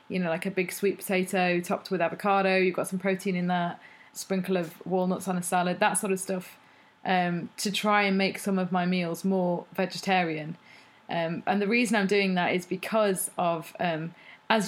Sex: female